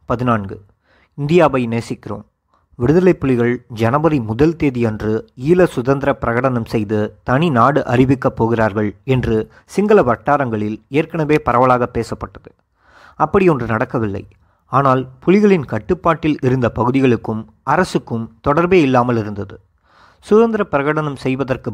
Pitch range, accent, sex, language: 115-155 Hz, native, male, Tamil